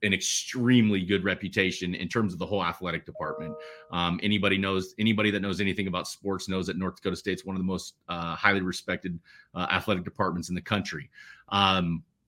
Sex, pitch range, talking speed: male, 105-165 Hz, 190 wpm